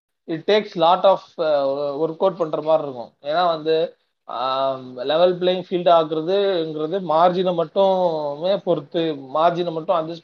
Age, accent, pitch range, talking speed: 20-39, native, 140-180 Hz, 125 wpm